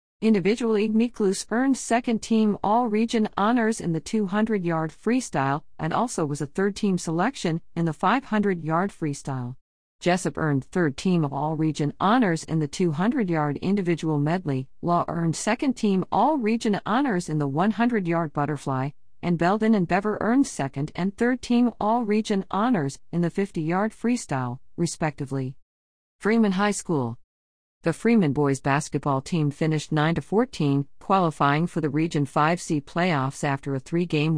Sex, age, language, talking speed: female, 50-69, English, 140 wpm